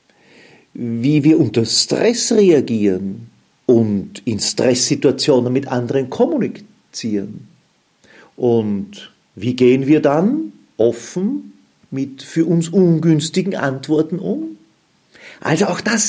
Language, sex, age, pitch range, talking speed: German, male, 50-69, 120-180 Hz, 95 wpm